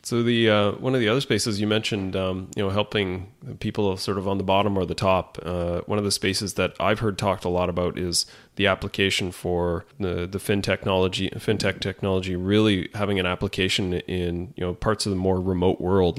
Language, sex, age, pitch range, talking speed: English, male, 30-49, 90-100 Hz, 215 wpm